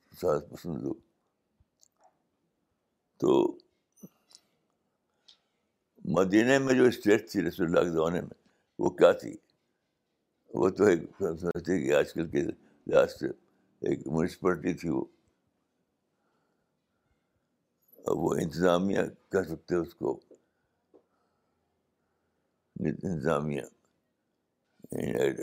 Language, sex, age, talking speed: Urdu, male, 60-79, 70 wpm